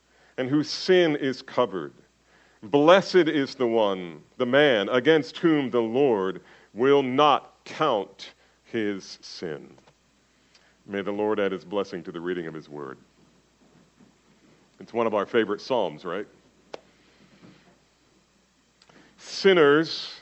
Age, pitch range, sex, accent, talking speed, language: 50-69, 125-160 Hz, male, American, 120 wpm, English